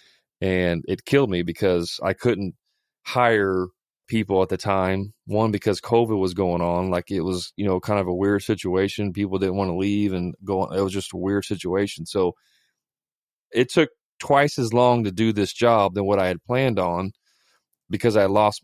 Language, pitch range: English, 95-115 Hz